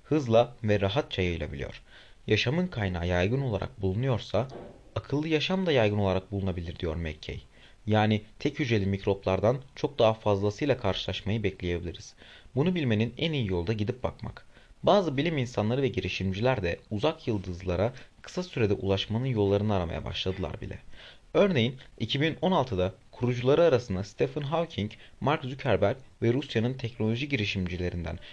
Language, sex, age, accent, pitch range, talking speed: Turkish, male, 30-49, native, 95-130 Hz, 130 wpm